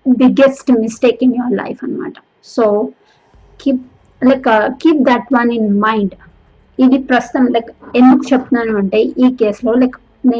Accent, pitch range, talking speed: native, 220-250 Hz, 175 wpm